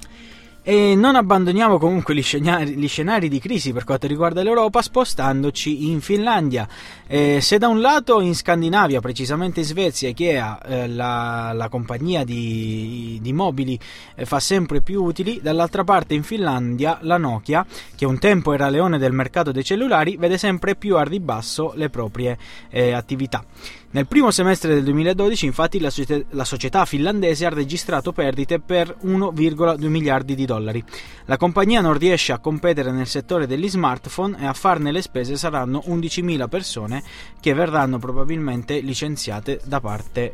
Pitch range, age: 130-175 Hz, 20-39